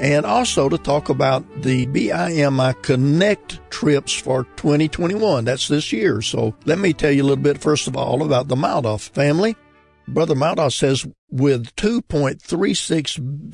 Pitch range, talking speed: 125-160 Hz, 150 wpm